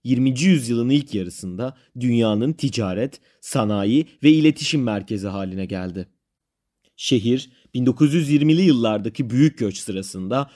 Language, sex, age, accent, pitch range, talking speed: Turkish, male, 30-49, native, 105-150 Hz, 100 wpm